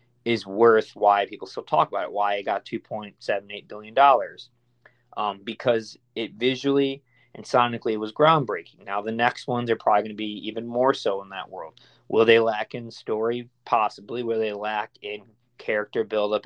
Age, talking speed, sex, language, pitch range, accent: 20-39, 185 wpm, male, English, 105-120 Hz, American